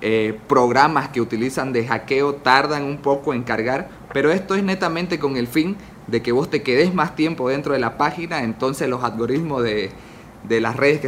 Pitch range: 125-180 Hz